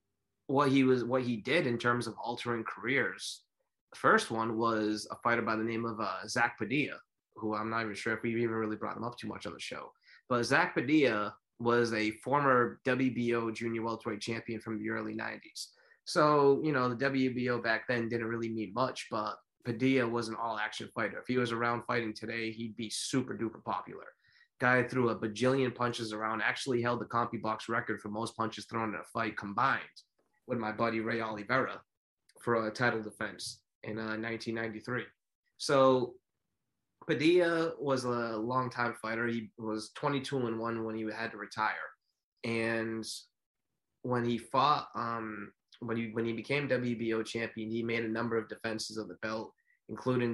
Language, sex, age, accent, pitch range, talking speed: English, male, 20-39, American, 110-125 Hz, 180 wpm